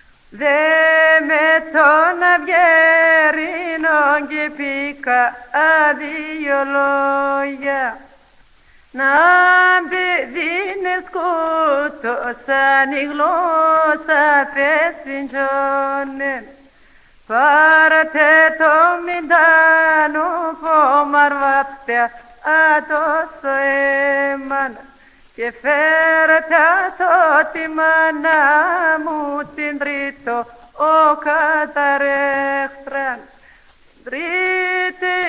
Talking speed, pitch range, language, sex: 50 wpm, 275-320 Hz, Greek, female